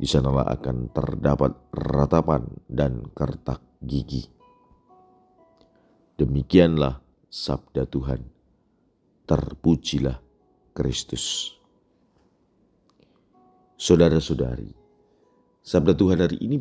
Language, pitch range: Indonesian, 70-80 Hz